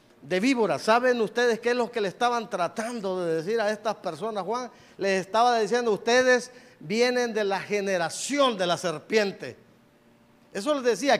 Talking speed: 165 wpm